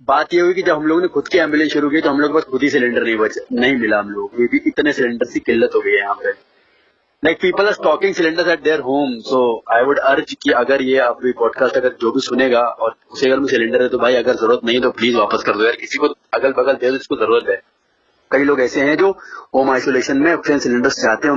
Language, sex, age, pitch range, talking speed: English, male, 20-39, 125-155 Hz, 165 wpm